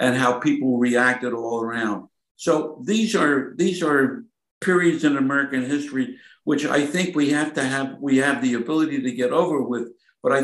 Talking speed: 185 wpm